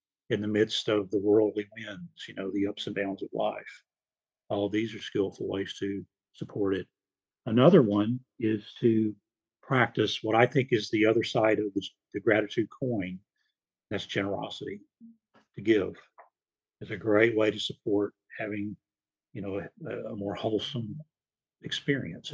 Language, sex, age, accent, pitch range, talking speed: English, male, 50-69, American, 105-130 Hz, 160 wpm